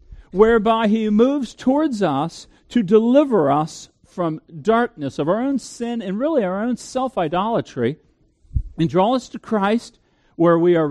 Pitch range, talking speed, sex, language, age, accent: 140-220 Hz, 150 wpm, male, English, 50-69, American